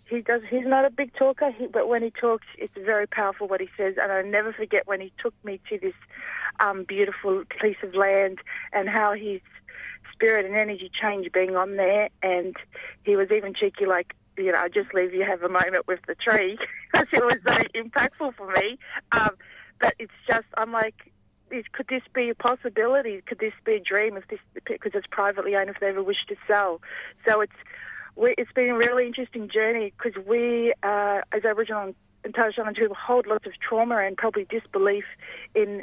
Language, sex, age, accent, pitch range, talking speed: English, female, 40-59, Australian, 195-240 Hz, 210 wpm